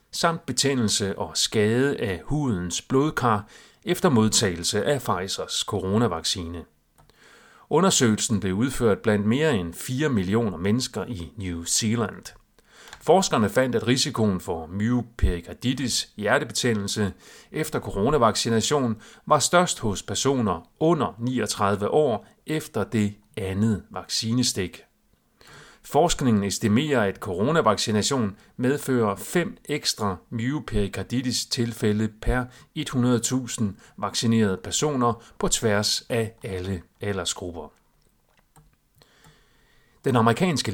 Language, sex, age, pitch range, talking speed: Danish, male, 40-59, 100-125 Hz, 95 wpm